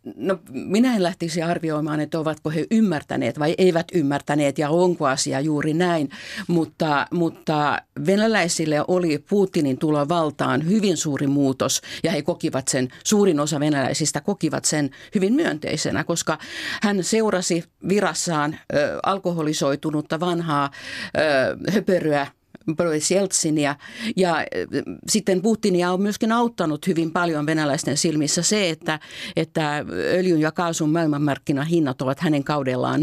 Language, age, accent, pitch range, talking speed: Finnish, 50-69, native, 145-180 Hz, 120 wpm